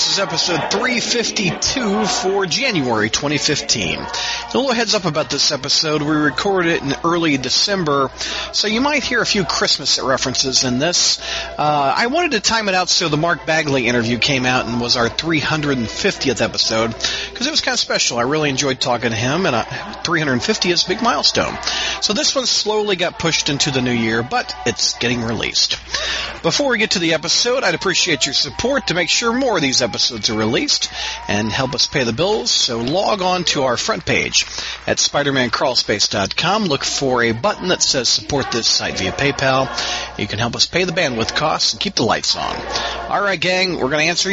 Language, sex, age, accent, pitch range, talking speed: English, male, 40-59, American, 135-205 Hz, 200 wpm